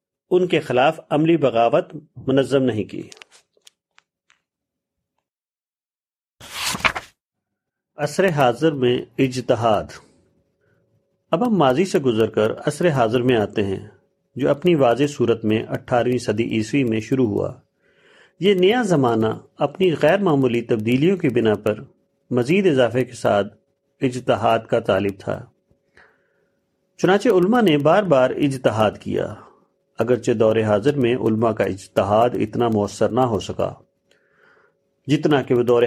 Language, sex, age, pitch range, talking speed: Urdu, male, 50-69, 110-145 Hz, 125 wpm